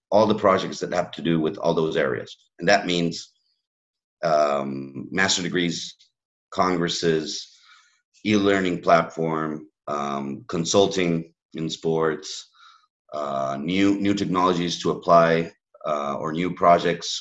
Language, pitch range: English, 80-100 Hz